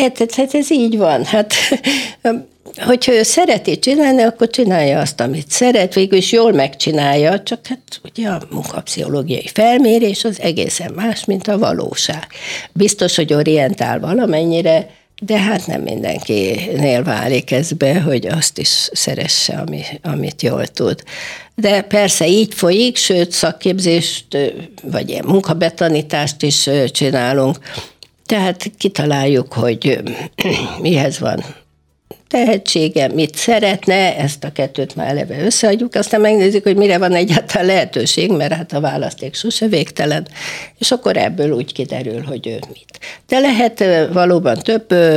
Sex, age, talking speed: female, 60-79, 130 wpm